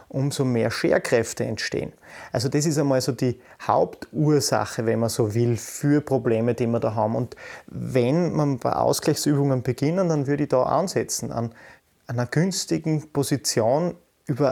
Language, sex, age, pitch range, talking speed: German, male, 30-49, 120-145 Hz, 155 wpm